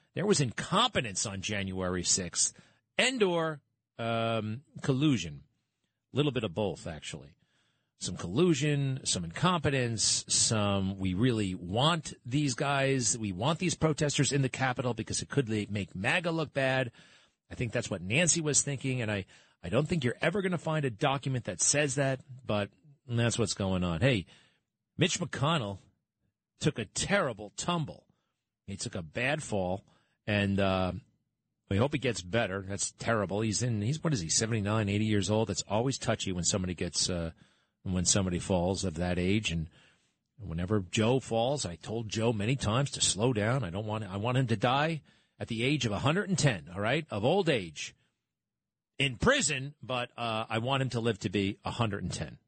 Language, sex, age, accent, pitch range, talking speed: English, male, 40-59, American, 100-140 Hz, 185 wpm